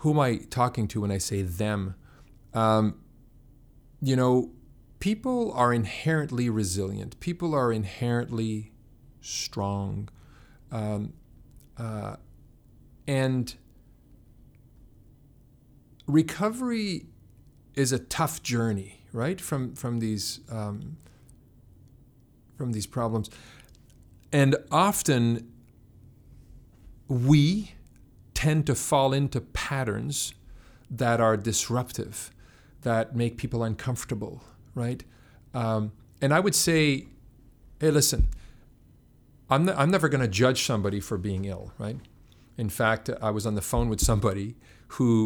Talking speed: 105 wpm